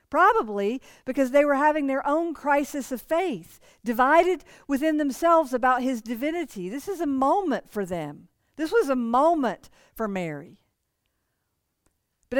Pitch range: 210-290 Hz